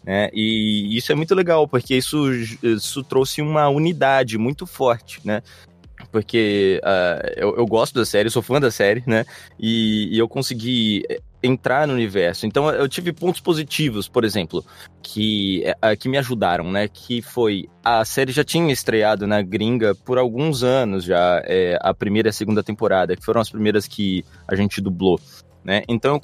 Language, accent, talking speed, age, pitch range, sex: Portuguese, Brazilian, 180 wpm, 20-39, 105-150 Hz, male